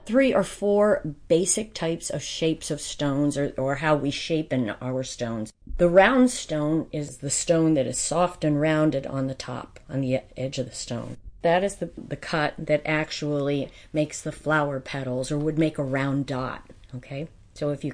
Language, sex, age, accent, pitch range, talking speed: English, female, 40-59, American, 140-170 Hz, 195 wpm